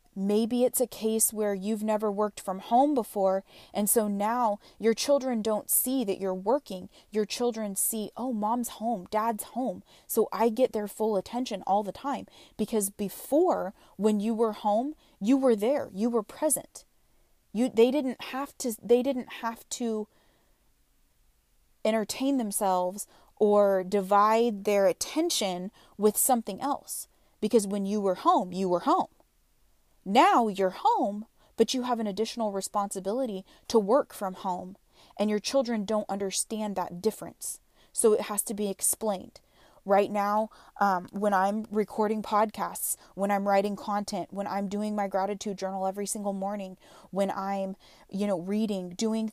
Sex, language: female, English